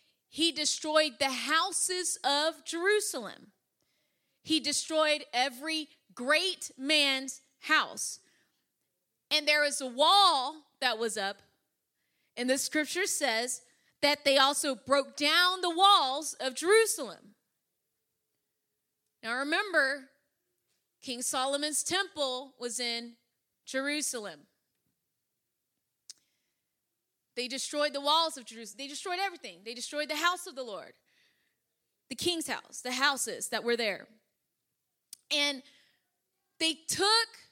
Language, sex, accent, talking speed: English, female, American, 110 wpm